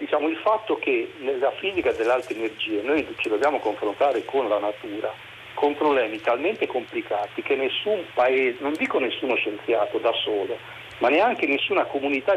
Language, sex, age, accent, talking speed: Italian, male, 50-69, native, 160 wpm